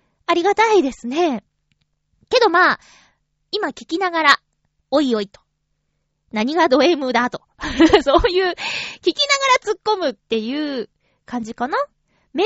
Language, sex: Japanese, female